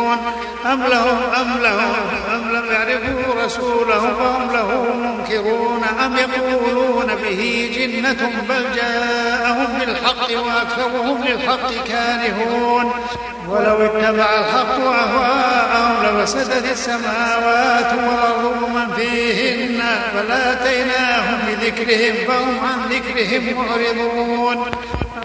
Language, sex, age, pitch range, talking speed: Arabic, male, 50-69, 235-250 Hz, 85 wpm